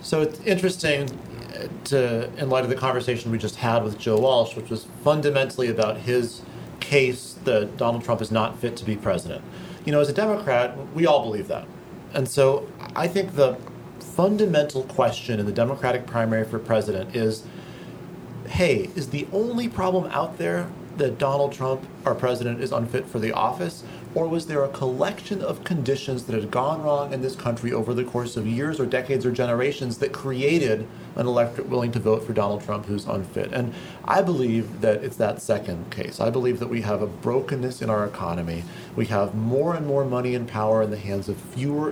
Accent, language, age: American, English, 30-49